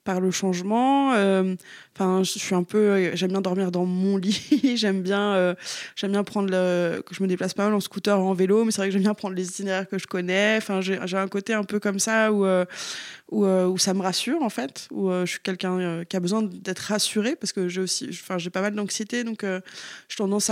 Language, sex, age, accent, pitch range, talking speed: French, female, 20-39, French, 190-215 Hz, 250 wpm